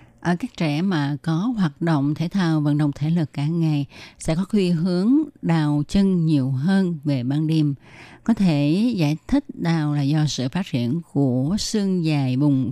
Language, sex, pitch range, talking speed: Vietnamese, female, 145-190 Hz, 185 wpm